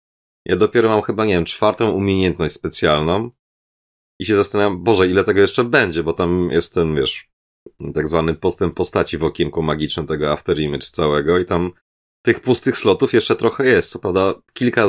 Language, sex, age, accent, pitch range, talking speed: Polish, male, 30-49, native, 85-100 Hz, 175 wpm